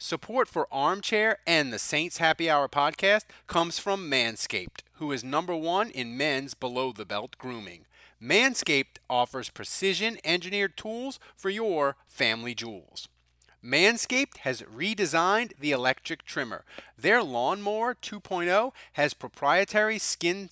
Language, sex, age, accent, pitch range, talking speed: English, male, 30-49, American, 145-210 Hz, 125 wpm